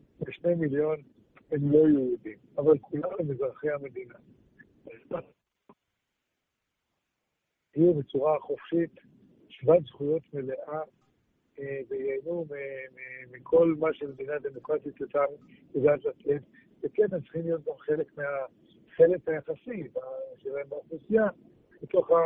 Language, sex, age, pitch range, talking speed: Hebrew, male, 60-79, 140-230 Hz, 85 wpm